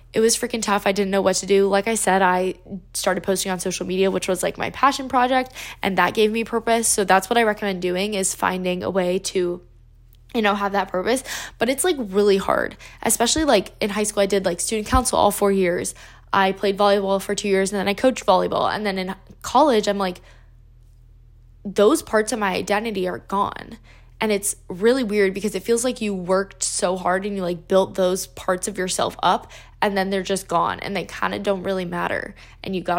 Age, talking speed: 10-29, 225 wpm